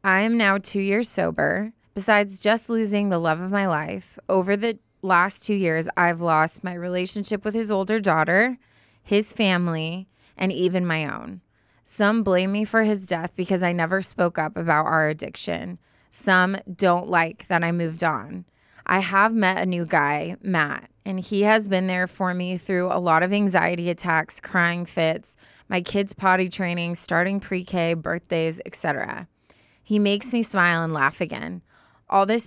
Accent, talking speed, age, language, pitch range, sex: American, 170 wpm, 20-39, English, 170-200 Hz, female